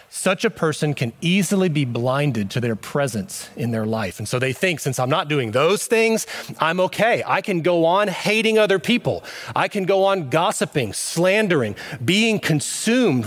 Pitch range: 140-205 Hz